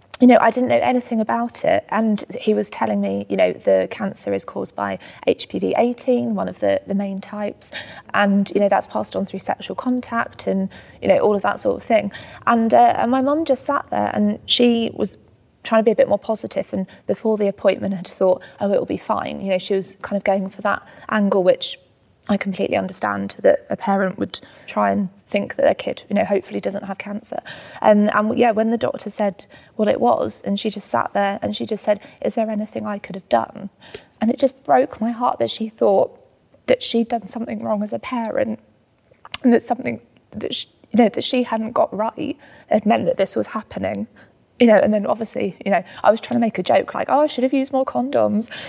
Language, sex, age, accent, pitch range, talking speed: English, female, 20-39, British, 195-240 Hz, 225 wpm